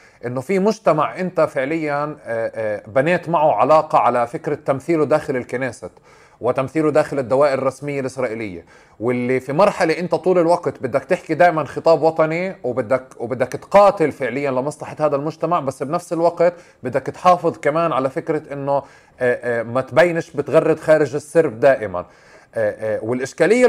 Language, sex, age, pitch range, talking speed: Arabic, male, 30-49, 125-165 Hz, 130 wpm